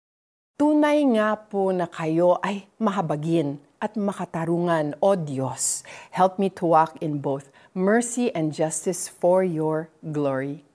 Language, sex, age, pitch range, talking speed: Filipino, female, 40-59, 160-235 Hz, 130 wpm